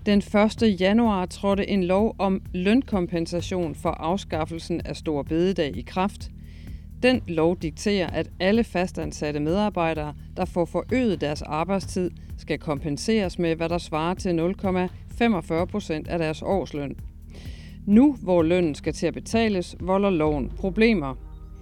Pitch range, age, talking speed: 160-210 Hz, 40-59, 135 wpm